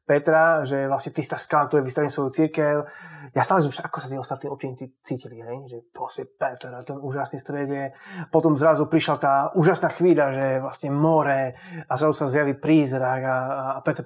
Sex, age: male, 20-39